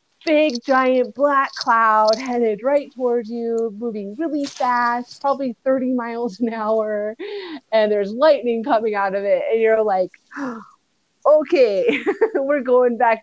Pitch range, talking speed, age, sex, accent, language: 180-240 Hz, 140 wpm, 30-49, female, American, English